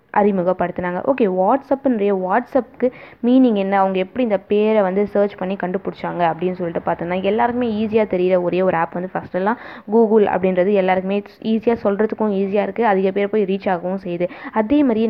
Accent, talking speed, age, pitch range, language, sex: native, 155 wpm, 20-39, 185-220 Hz, Tamil, female